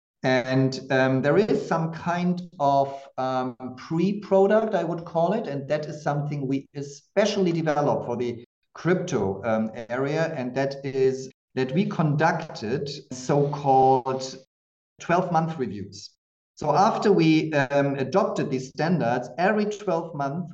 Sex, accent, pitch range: male, German, 130-170 Hz